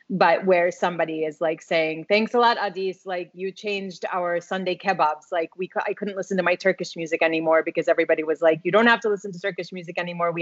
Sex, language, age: female, English, 30-49